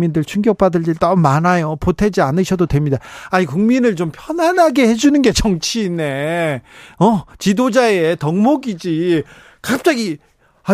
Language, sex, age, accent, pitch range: Korean, male, 40-59, native, 165-225 Hz